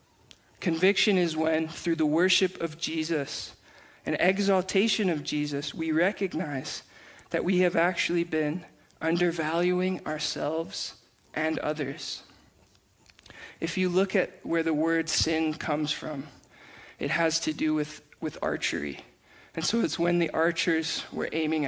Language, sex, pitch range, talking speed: English, male, 160-185 Hz, 135 wpm